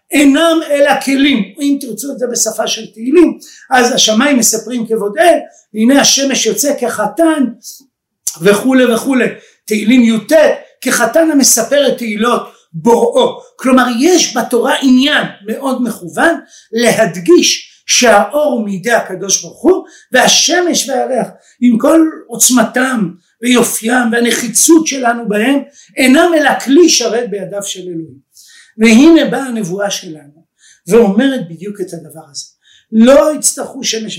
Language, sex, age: Hebrew, male, 50-69